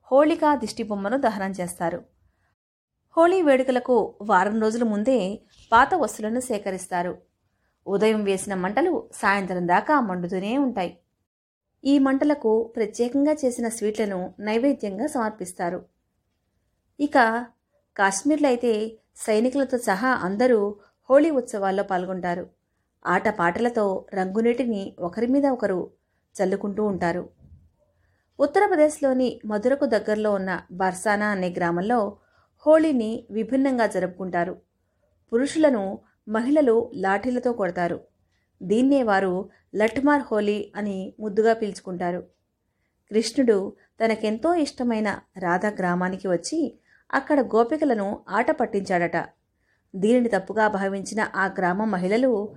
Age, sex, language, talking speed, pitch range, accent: 30-49, female, Telugu, 90 wpm, 185-250 Hz, native